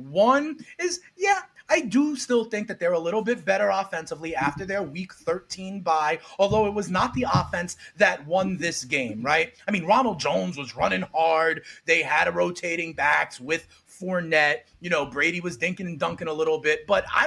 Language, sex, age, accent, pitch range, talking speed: English, male, 30-49, American, 155-210 Hz, 195 wpm